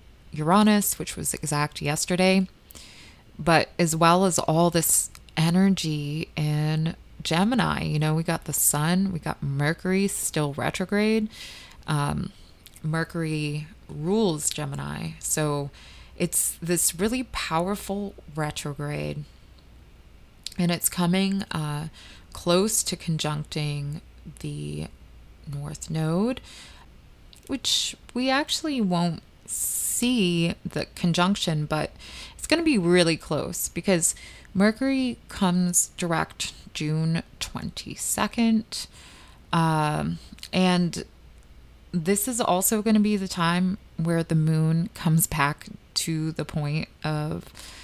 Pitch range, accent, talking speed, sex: 150-185 Hz, American, 105 wpm, female